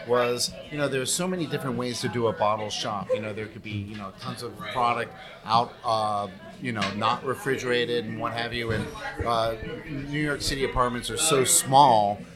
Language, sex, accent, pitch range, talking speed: English, male, American, 115-135 Hz, 205 wpm